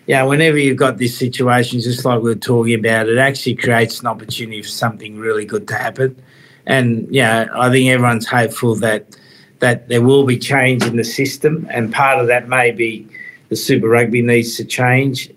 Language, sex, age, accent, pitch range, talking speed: English, male, 50-69, Australian, 115-130 Hz, 195 wpm